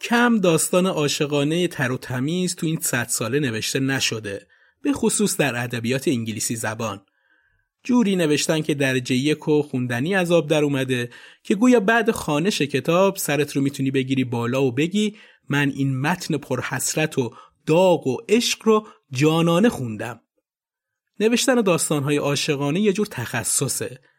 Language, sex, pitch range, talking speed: Persian, male, 125-185 Hz, 145 wpm